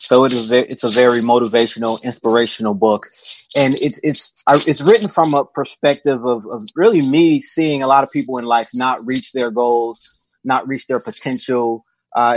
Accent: American